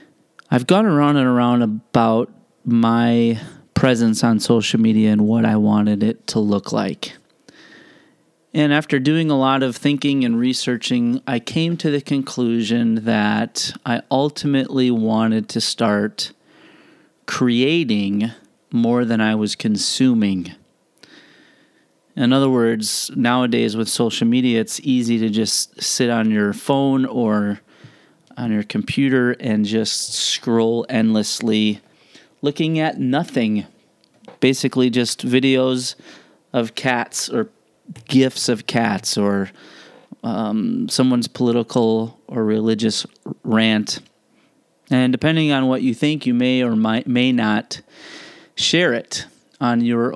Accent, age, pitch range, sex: American, 40-59, 110-130 Hz, male